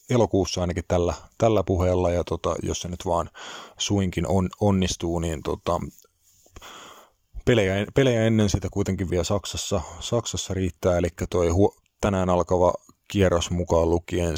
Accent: native